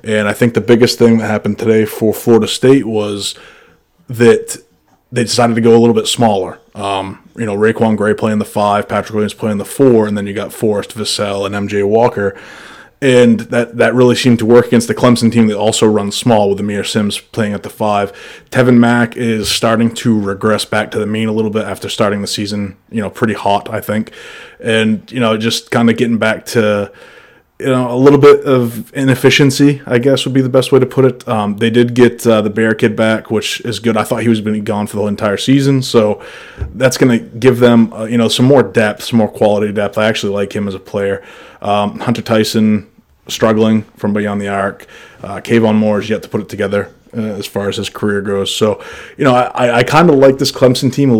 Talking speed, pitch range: 230 wpm, 105-120 Hz